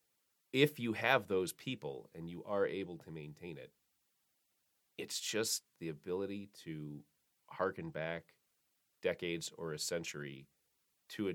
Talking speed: 130 wpm